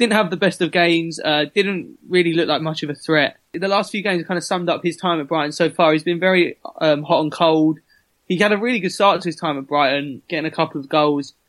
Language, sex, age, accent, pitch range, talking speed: English, male, 20-39, British, 145-175 Hz, 270 wpm